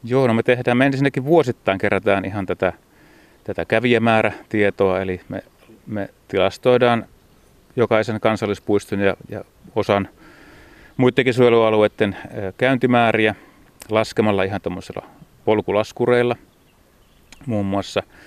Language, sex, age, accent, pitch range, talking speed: Finnish, male, 30-49, native, 95-115 Hz, 100 wpm